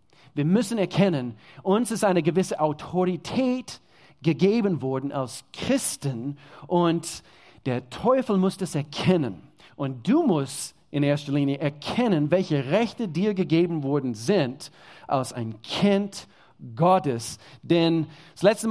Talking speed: 120 wpm